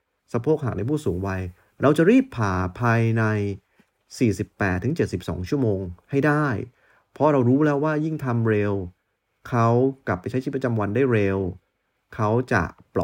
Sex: male